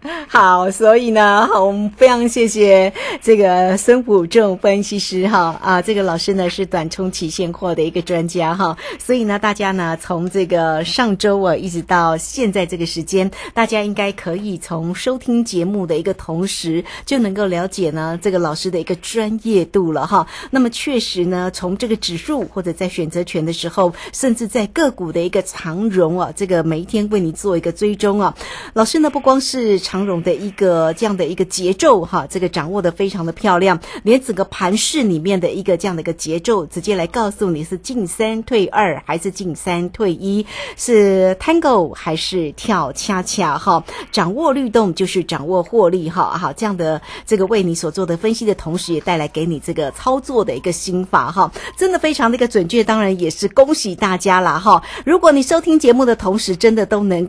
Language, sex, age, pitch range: Chinese, female, 50-69, 175-220 Hz